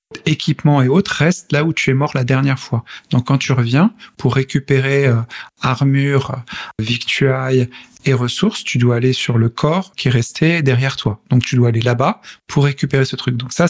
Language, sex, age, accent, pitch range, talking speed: French, male, 40-59, French, 125-145 Hz, 195 wpm